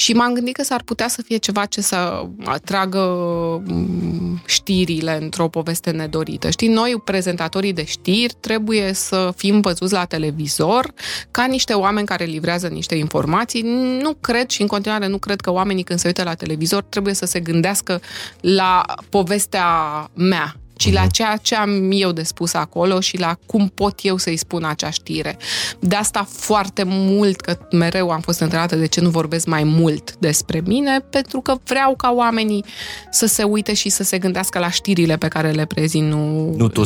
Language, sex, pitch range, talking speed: Romanian, female, 165-215 Hz, 180 wpm